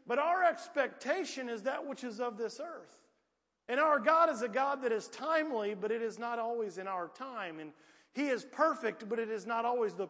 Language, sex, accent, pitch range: English, male, American, 190-260 Hz